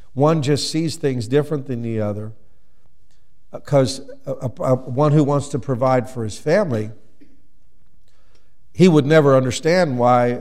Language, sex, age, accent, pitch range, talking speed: English, male, 50-69, American, 110-150 Hz, 145 wpm